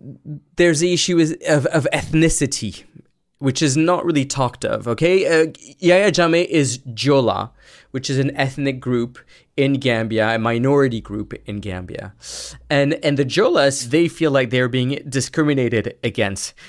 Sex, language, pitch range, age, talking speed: male, English, 115-145 Hz, 20-39, 145 wpm